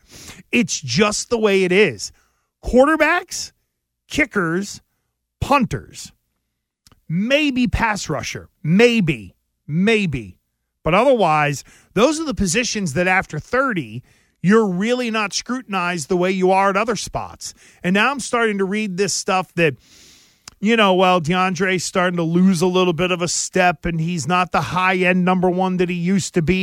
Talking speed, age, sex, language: 155 wpm, 40-59, male, English